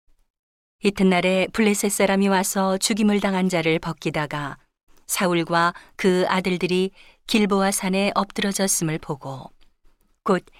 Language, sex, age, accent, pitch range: Korean, female, 40-59, native, 170-200 Hz